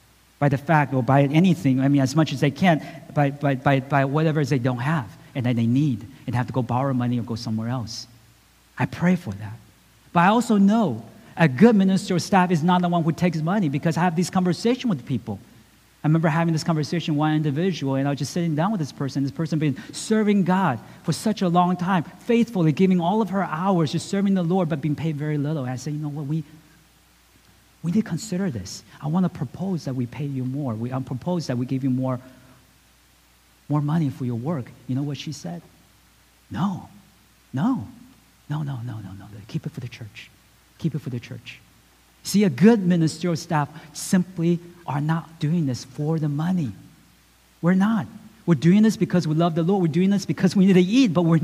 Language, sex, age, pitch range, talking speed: English, male, 40-59, 135-180 Hz, 225 wpm